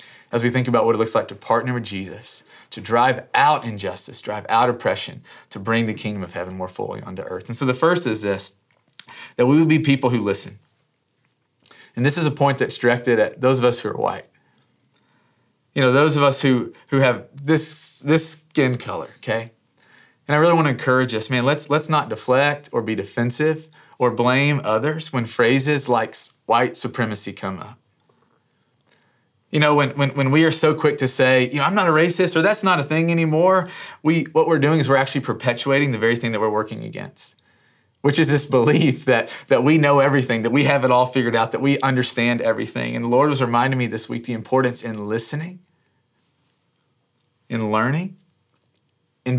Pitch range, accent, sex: 120-150 Hz, American, male